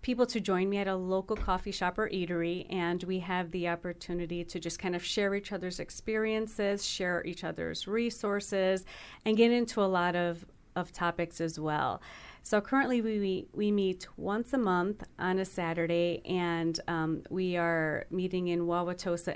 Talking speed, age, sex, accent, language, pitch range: 175 wpm, 40-59, female, American, English, 170-200 Hz